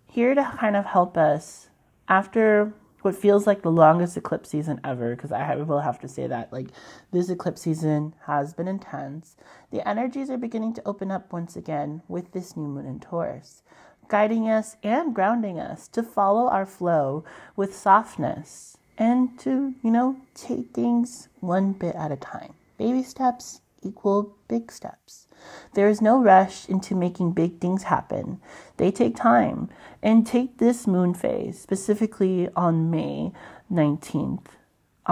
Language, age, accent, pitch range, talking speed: English, 30-49, American, 165-225 Hz, 155 wpm